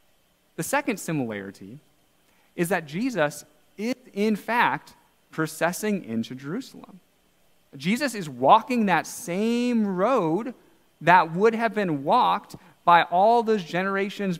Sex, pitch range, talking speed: male, 140-195 Hz, 115 wpm